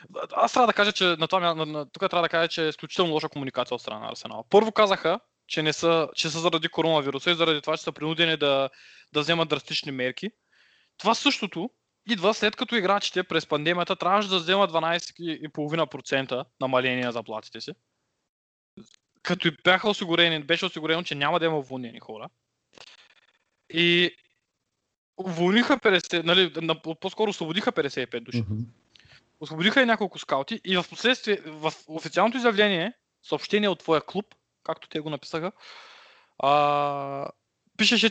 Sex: male